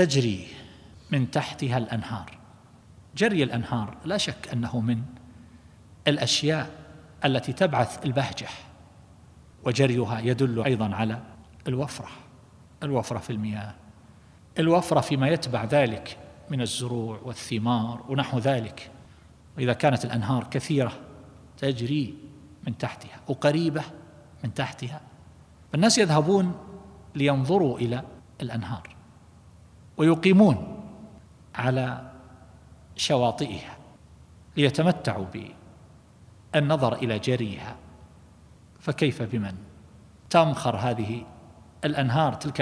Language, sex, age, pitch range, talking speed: Arabic, male, 50-69, 110-140 Hz, 85 wpm